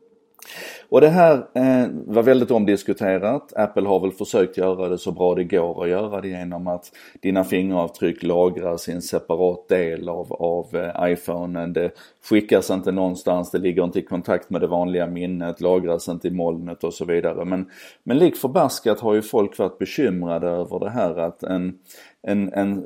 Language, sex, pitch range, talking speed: Swedish, male, 90-105 Hz, 175 wpm